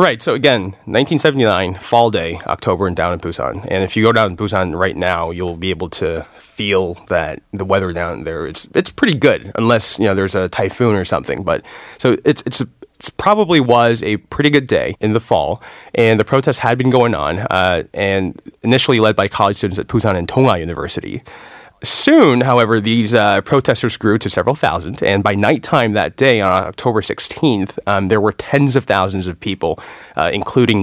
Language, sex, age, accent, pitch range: Korean, male, 30-49, American, 95-120 Hz